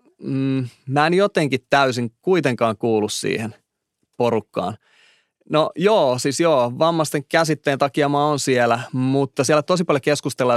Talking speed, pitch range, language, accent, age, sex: 130 wpm, 120-150 Hz, Finnish, native, 30-49, male